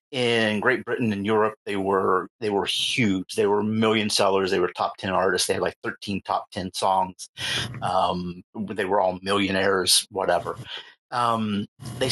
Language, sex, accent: English, male, American